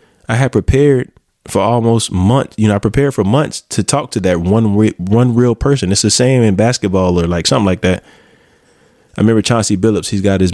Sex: male